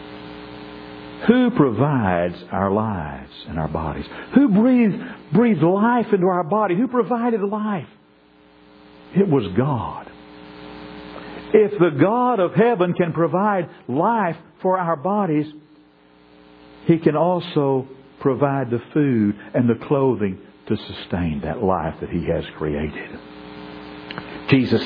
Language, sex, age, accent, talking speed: English, male, 60-79, American, 120 wpm